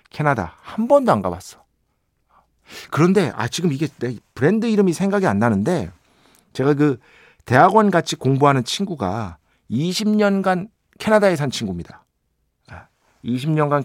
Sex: male